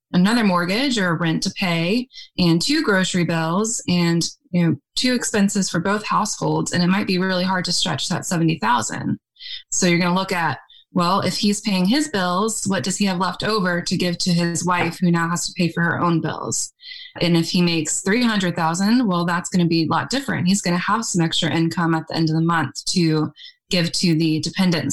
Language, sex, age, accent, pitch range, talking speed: English, female, 20-39, American, 170-205 Hz, 220 wpm